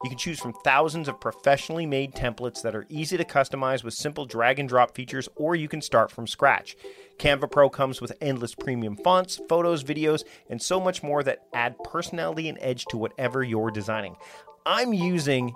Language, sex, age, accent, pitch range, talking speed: English, male, 40-59, American, 115-165 Hz, 195 wpm